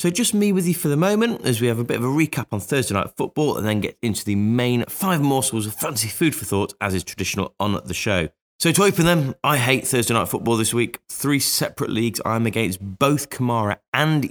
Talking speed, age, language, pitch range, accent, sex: 245 wpm, 20-39, English, 100-145 Hz, British, male